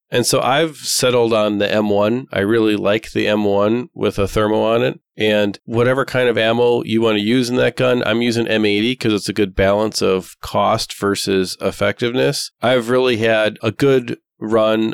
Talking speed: 190 wpm